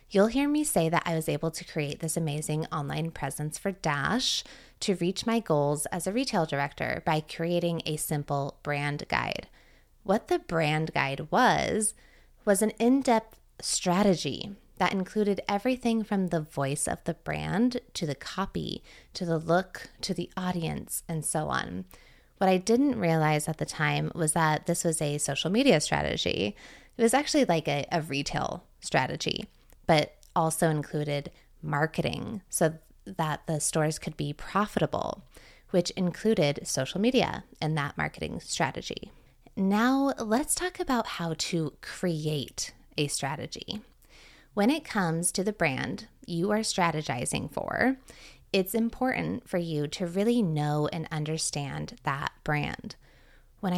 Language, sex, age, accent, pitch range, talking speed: English, female, 20-39, American, 155-205 Hz, 150 wpm